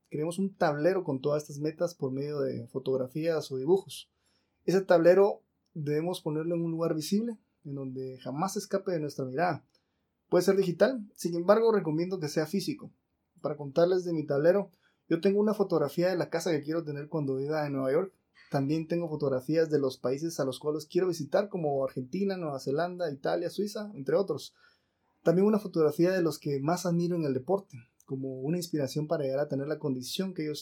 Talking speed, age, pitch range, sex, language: 195 wpm, 20-39, 145-185 Hz, male, Spanish